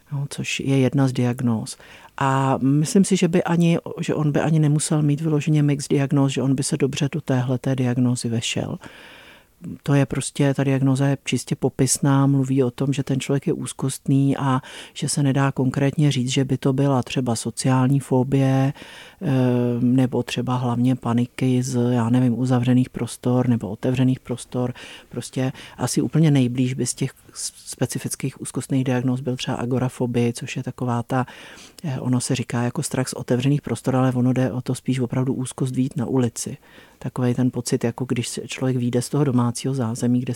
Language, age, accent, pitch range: Czech, 50-69, native, 125-145 Hz